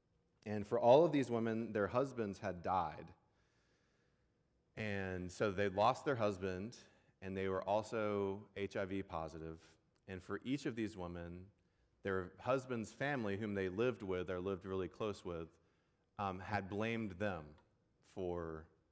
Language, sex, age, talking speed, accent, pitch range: English, male, 30-49, 145 wpm, American, 95-110 Hz